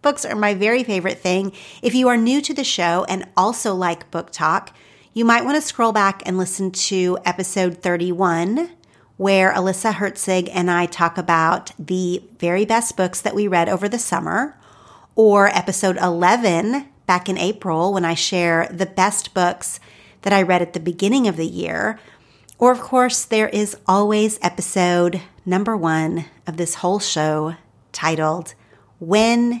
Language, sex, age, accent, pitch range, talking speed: English, female, 40-59, American, 175-225 Hz, 165 wpm